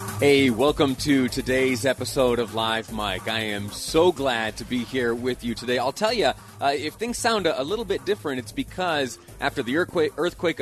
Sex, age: male, 30-49